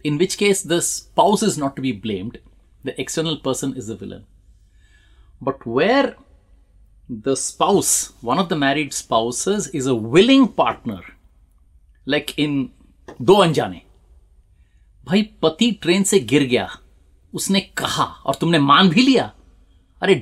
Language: Hindi